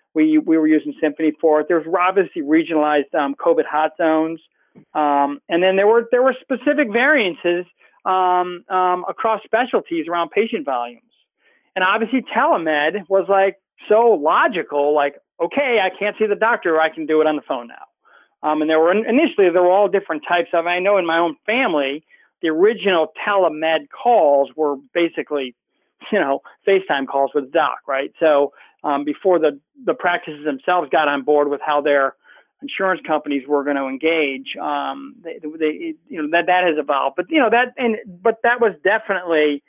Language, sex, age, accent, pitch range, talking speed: English, male, 40-59, American, 155-220 Hz, 185 wpm